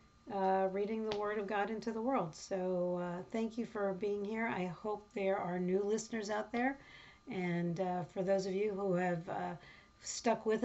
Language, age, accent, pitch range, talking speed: English, 50-69, American, 190-235 Hz, 195 wpm